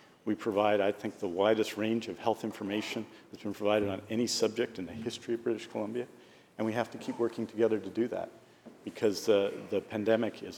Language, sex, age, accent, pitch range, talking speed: English, male, 50-69, American, 105-125 Hz, 210 wpm